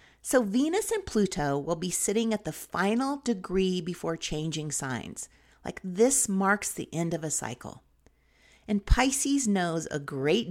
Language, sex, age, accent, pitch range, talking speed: English, female, 40-59, American, 155-245 Hz, 155 wpm